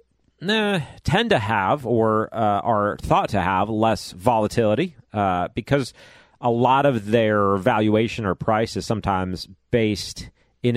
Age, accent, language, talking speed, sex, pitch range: 40-59, American, English, 135 wpm, male, 95-115 Hz